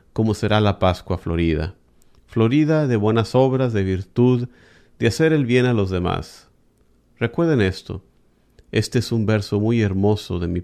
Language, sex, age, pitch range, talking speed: Spanish, male, 50-69, 90-120 Hz, 160 wpm